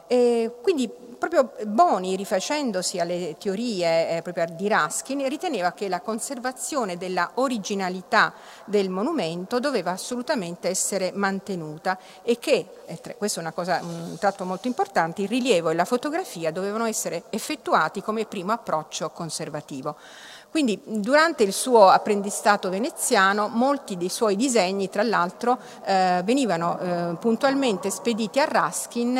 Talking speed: 125 wpm